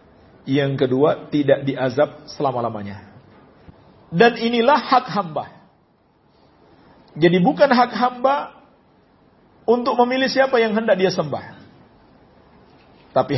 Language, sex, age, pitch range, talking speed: English, male, 50-69, 155-235 Hz, 95 wpm